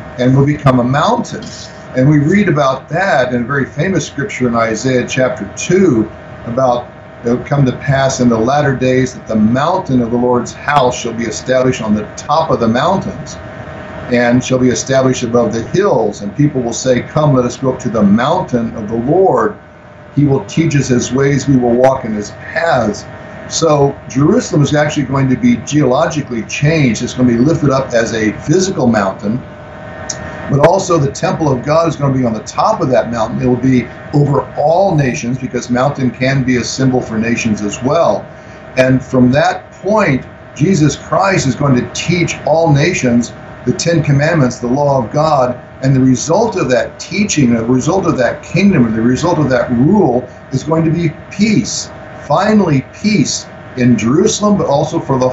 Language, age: English, 50-69